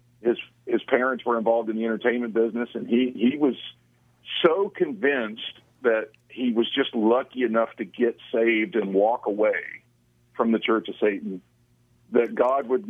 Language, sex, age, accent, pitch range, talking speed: English, male, 50-69, American, 110-135 Hz, 165 wpm